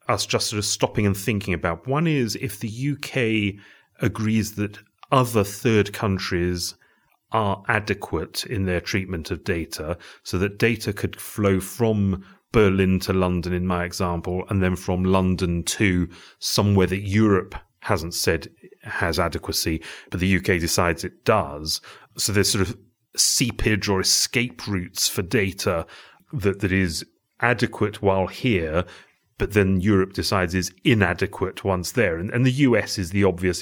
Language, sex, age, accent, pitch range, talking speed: English, male, 30-49, British, 95-105 Hz, 155 wpm